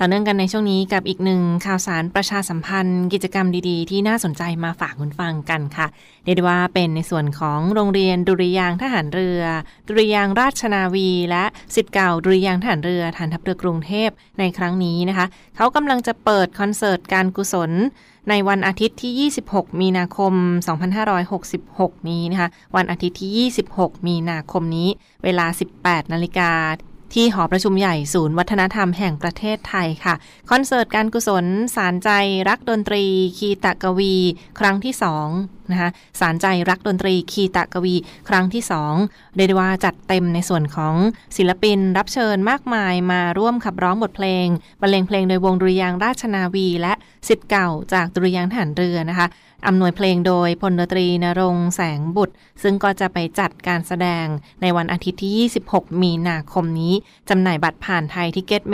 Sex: female